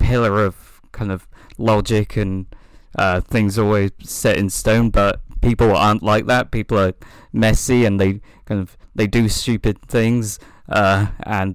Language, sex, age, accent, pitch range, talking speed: English, male, 20-39, British, 95-110 Hz, 155 wpm